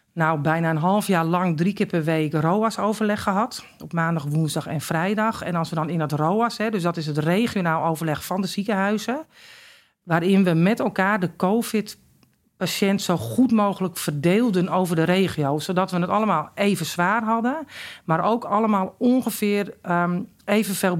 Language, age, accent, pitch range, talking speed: Dutch, 50-69, Dutch, 165-205 Hz, 170 wpm